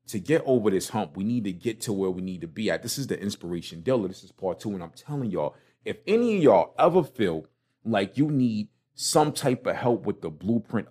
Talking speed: 250 wpm